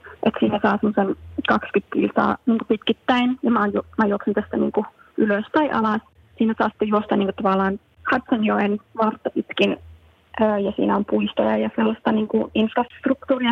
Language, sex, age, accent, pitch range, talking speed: Finnish, female, 20-39, native, 210-240 Hz, 155 wpm